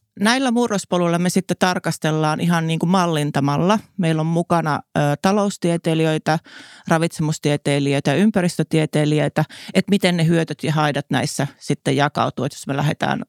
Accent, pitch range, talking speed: native, 145-165 Hz, 125 wpm